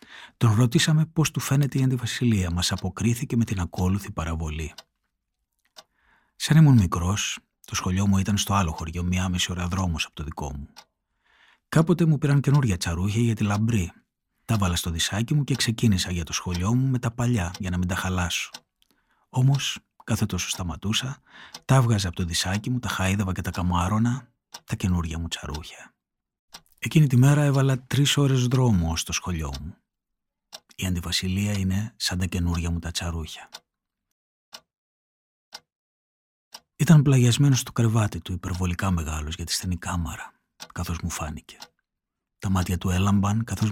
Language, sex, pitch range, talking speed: Greek, male, 90-120 Hz, 155 wpm